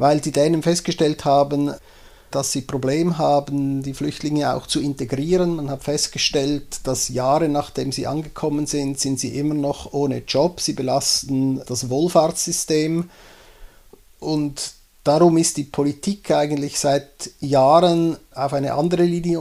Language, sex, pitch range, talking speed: German, male, 135-160 Hz, 140 wpm